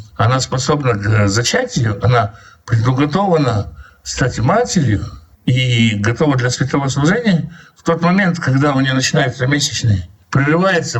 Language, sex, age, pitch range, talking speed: Russian, male, 60-79, 115-155 Hz, 120 wpm